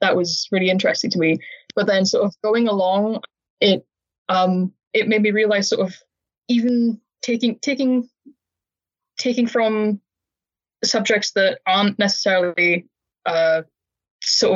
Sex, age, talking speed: female, 10-29, 130 wpm